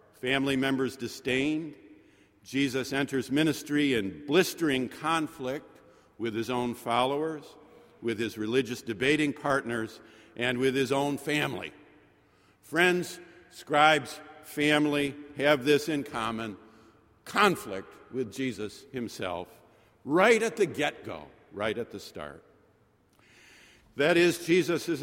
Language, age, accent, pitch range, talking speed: English, 50-69, American, 115-155 Hz, 110 wpm